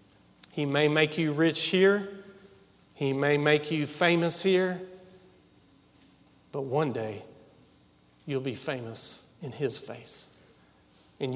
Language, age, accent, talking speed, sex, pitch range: English, 40-59, American, 115 wpm, male, 135-160 Hz